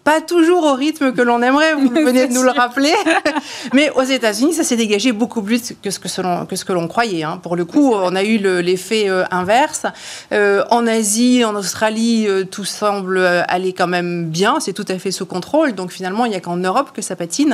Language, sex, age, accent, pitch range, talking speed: French, female, 30-49, French, 185-245 Hz, 235 wpm